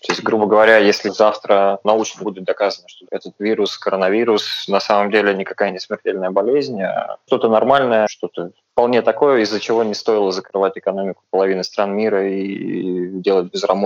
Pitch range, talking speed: 95-110 Hz, 160 wpm